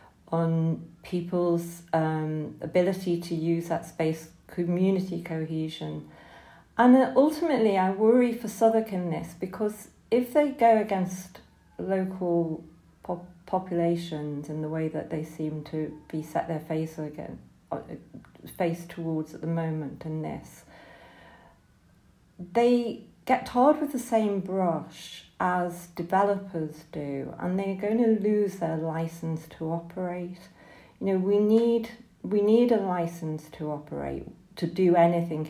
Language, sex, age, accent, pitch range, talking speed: English, female, 40-59, British, 160-195 Hz, 130 wpm